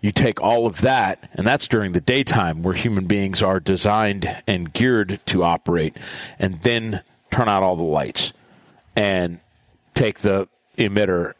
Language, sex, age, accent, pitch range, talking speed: English, male, 40-59, American, 95-110 Hz, 160 wpm